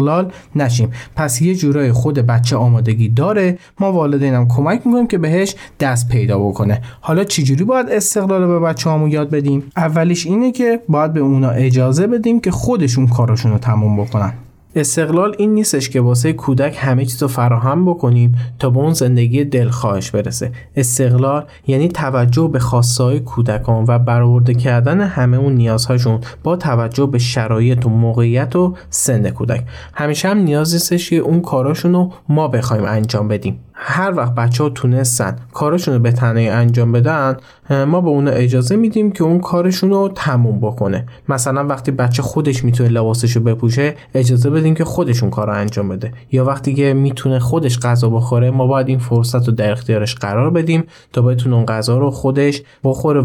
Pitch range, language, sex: 120-155 Hz, Persian, male